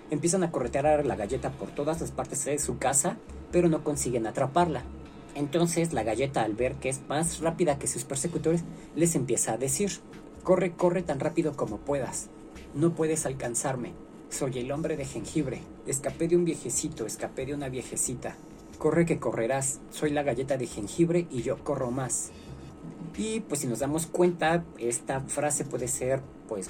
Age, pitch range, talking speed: 40-59, 135-170 Hz, 175 wpm